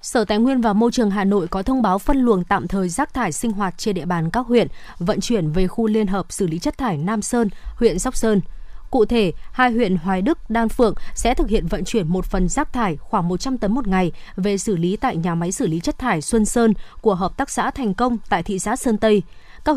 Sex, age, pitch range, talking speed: female, 20-39, 190-235 Hz, 260 wpm